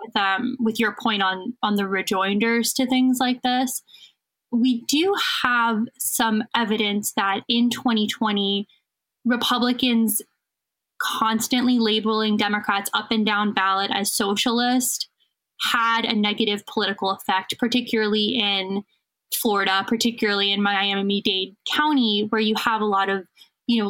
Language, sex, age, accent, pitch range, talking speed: English, female, 10-29, American, 210-245 Hz, 130 wpm